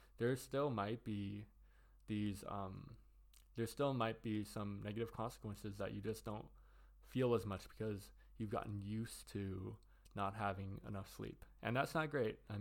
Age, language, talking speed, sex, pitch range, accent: 20-39, English, 160 wpm, male, 100-110 Hz, American